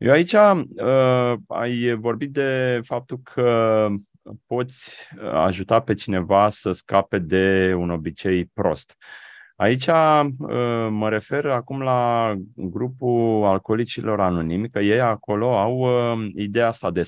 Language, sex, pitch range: Romanian, male, 100-130 Hz